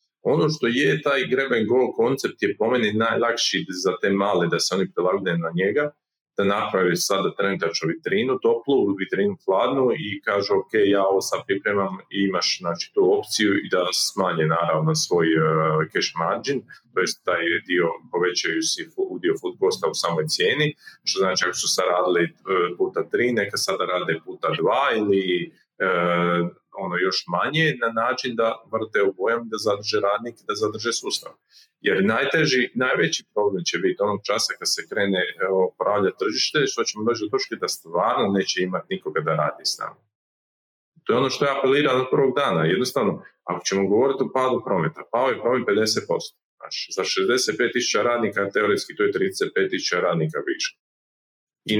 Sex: male